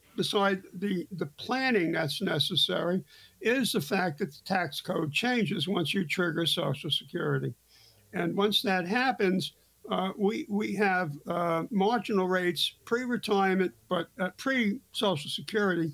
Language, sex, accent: English, male, American